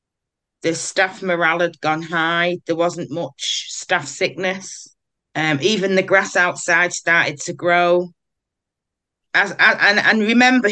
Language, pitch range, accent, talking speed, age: English, 160-190 Hz, British, 135 wpm, 30-49